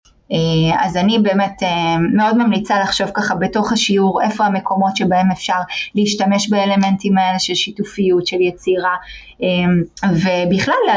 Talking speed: 115 wpm